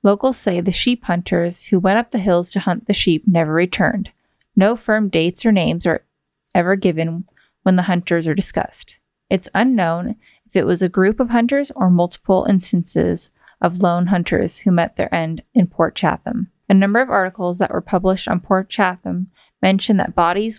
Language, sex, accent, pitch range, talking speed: English, female, American, 175-205 Hz, 185 wpm